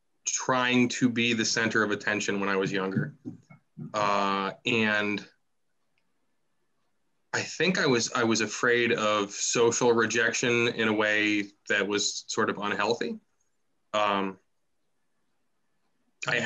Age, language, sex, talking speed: 20-39, English, male, 120 wpm